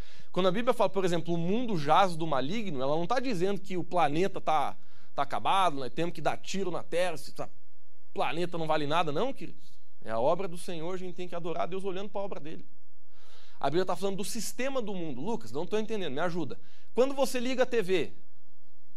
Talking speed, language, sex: 230 wpm, Portuguese, male